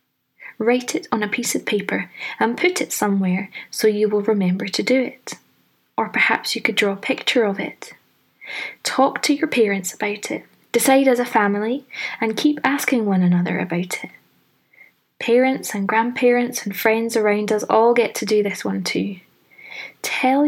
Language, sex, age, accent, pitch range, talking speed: English, female, 20-39, British, 200-240 Hz, 175 wpm